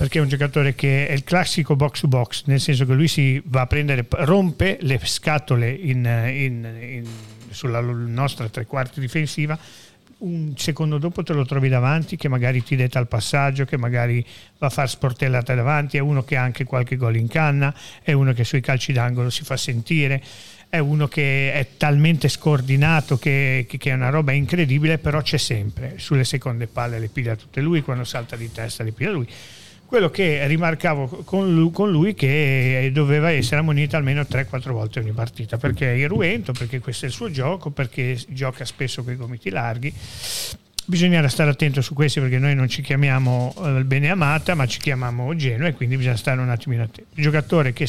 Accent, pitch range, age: native, 125-150 Hz, 40-59